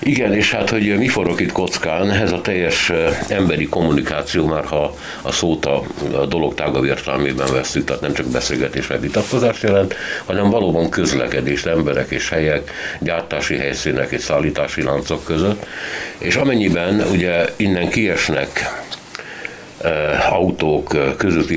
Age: 60-79